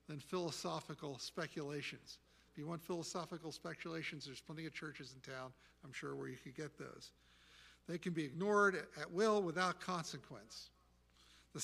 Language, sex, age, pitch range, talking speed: English, male, 50-69, 140-180 Hz, 155 wpm